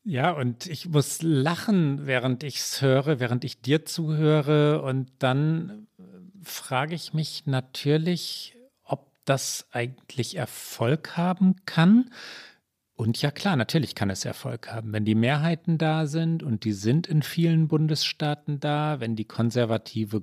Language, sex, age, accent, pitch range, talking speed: German, male, 40-59, German, 120-155 Hz, 140 wpm